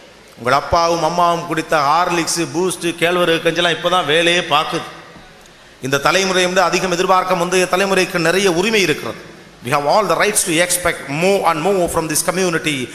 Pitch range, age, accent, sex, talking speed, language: 160-190 Hz, 40-59, native, male, 160 wpm, Tamil